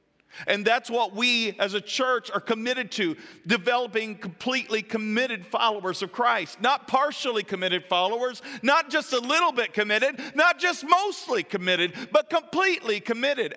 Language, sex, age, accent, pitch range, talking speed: English, male, 50-69, American, 170-255 Hz, 145 wpm